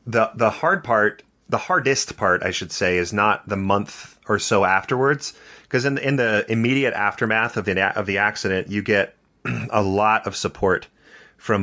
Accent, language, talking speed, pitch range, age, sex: American, English, 185 wpm, 95-115 Hz, 30-49, male